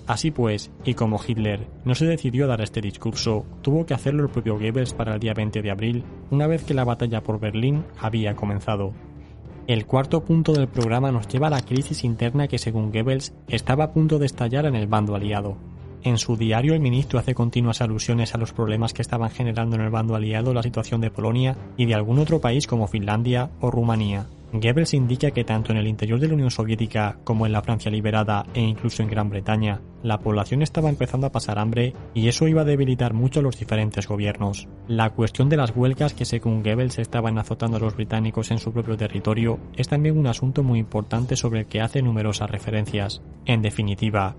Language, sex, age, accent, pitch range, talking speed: Spanish, male, 20-39, Spanish, 110-130 Hz, 210 wpm